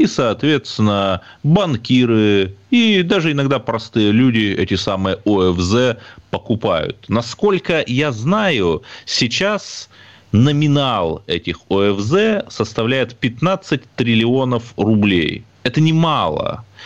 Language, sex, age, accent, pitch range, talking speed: Russian, male, 30-49, native, 95-150 Hz, 90 wpm